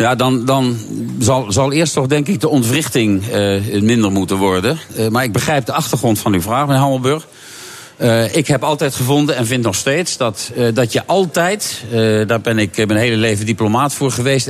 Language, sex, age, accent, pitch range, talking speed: Dutch, male, 50-69, Dutch, 115-150 Hz, 205 wpm